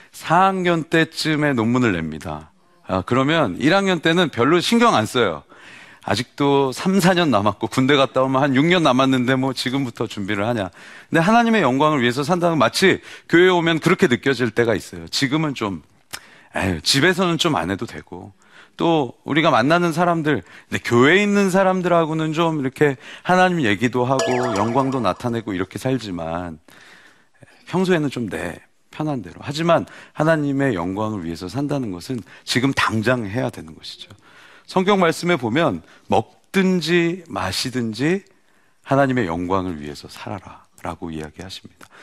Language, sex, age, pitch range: Korean, male, 40-59, 110-175 Hz